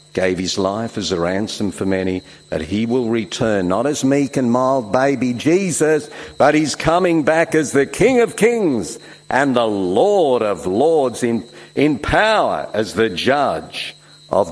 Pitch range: 105-150 Hz